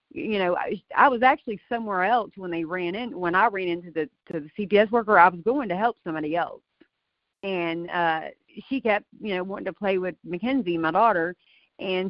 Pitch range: 175-235 Hz